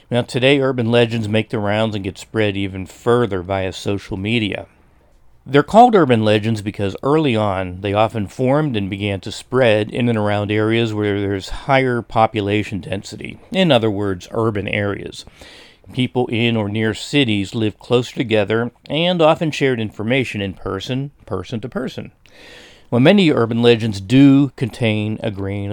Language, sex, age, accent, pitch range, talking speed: English, male, 40-59, American, 100-125 Hz, 155 wpm